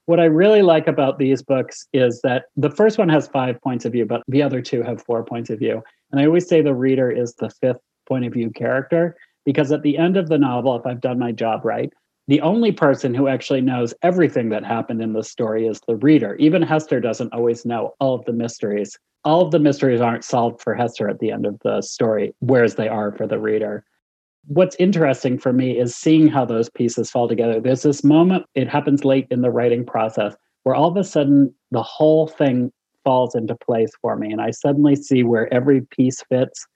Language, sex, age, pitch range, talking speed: English, male, 40-59, 120-145 Hz, 225 wpm